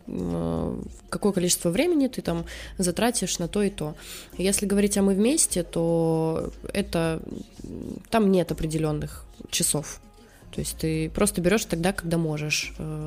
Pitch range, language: 160-195 Hz, Russian